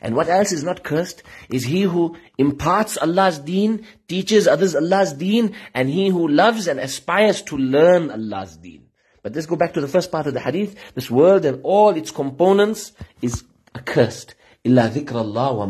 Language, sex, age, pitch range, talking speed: English, male, 50-69, 140-195 Hz, 180 wpm